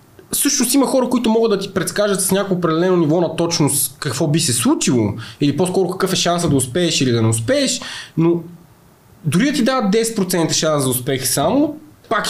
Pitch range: 130-210 Hz